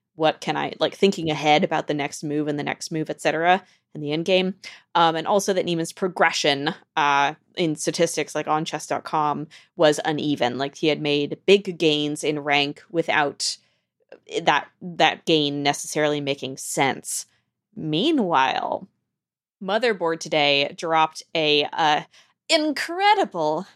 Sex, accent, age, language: female, American, 20-39, English